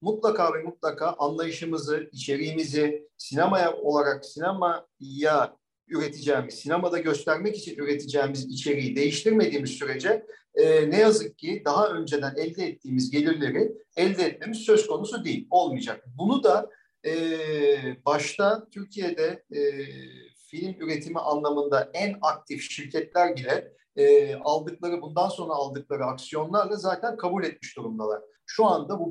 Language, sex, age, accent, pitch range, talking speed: Turkish, male, 50-69, native, 145-210 Hz, 120 wpm